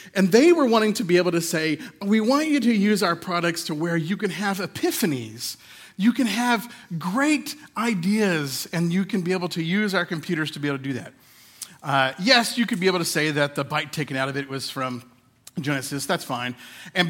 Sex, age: male, 40-59